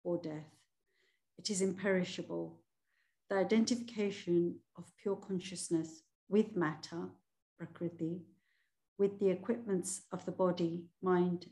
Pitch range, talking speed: 170-200 Hz, 105 wpm